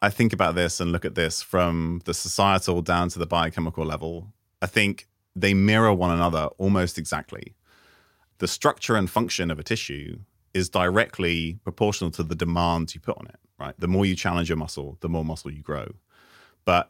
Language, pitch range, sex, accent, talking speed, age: English, 80-95 Hz, male, British, 190 wpm, 30-49